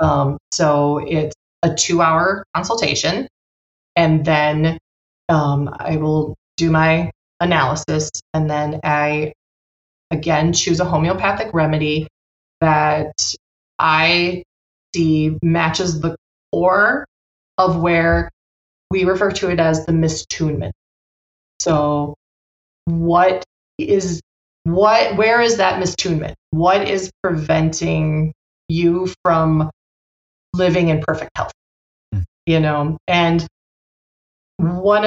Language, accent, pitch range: English, American, 150-175 Hz